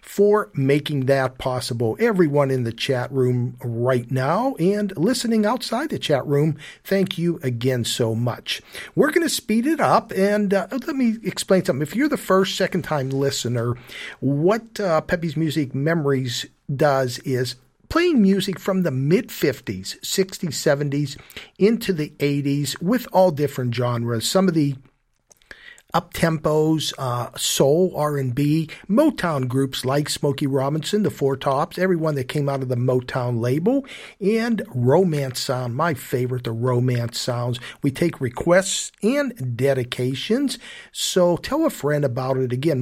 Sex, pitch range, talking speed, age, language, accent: male, 130-185 Hz, 145 wpm, 50-69, English, American